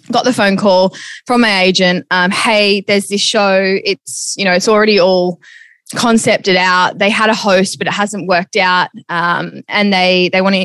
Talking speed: 190 wpm